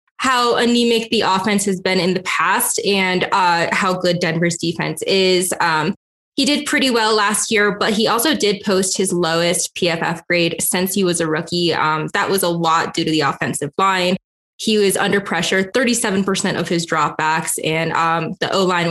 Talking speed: 185 wpm